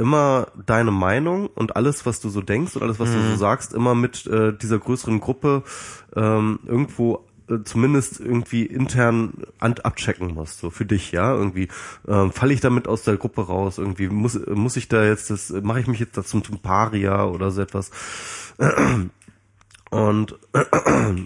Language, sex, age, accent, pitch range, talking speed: German, male, 20-39, German, 95-120 Hz, 170 wpm